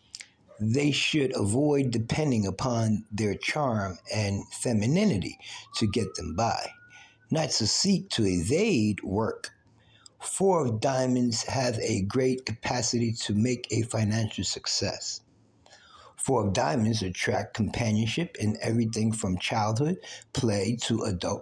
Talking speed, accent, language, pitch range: 120 wpm, American, English, 105-125 Hz